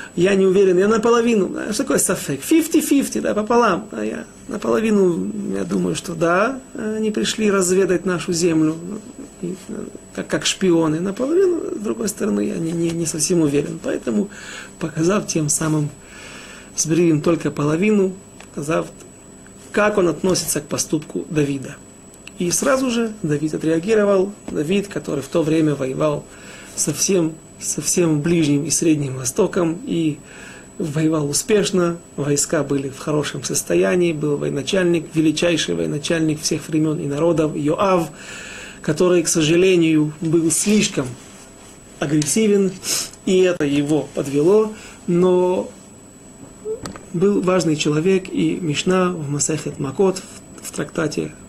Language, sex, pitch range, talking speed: Russian, male, 155-195 Hz, 120 wpm